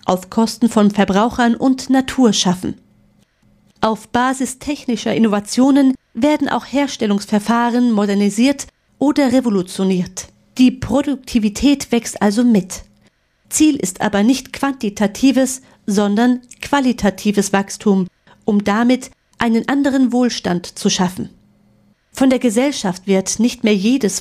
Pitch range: 205-255 Hz